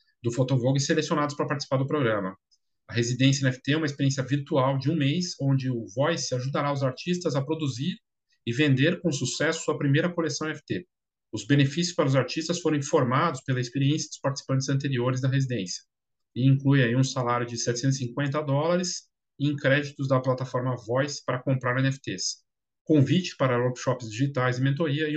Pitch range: 125-155 Hz